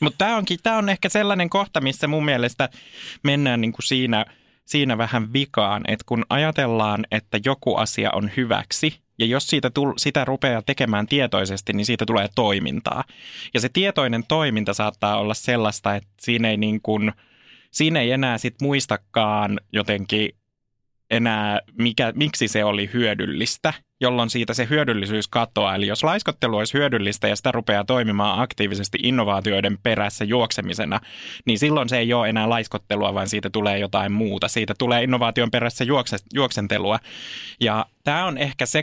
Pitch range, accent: 105-135 Hz, native